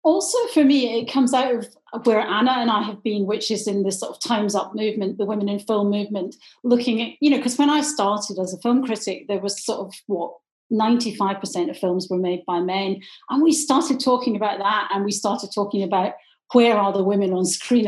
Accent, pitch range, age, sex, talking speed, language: British, 200-250 Hz, 40-59, female, 230 wpm, English